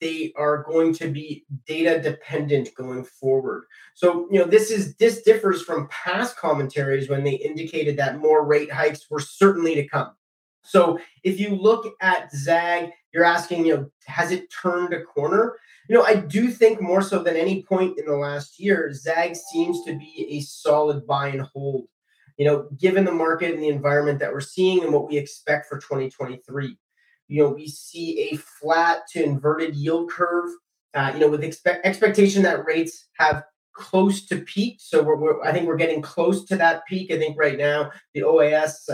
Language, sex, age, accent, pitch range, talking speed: English, male, 30-49, American, 150-180 Hz, 185 wpm